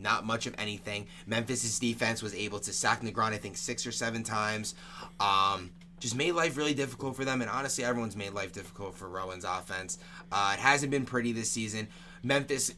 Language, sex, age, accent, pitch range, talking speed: English, male, 20-39, American, 105-130 Hz, 195 wpm